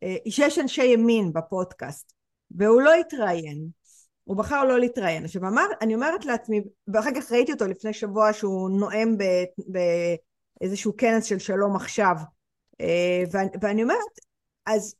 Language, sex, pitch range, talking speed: Hebrew, female, 190-250 Hz, 125 wpm